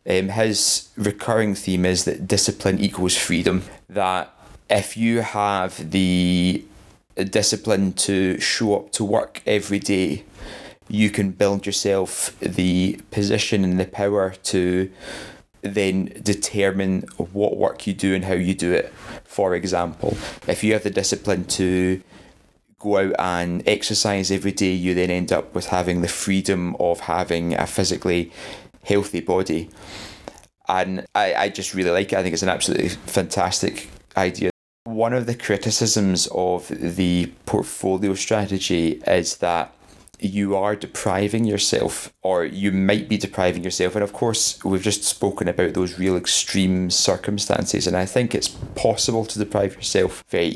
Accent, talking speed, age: British, 150 wpm, 20-39